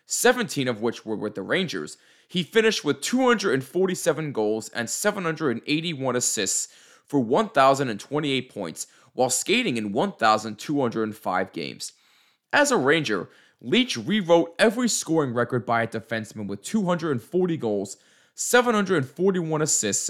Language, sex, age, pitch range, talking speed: English, male, 20-39, 115-180 Hz, 115 wpm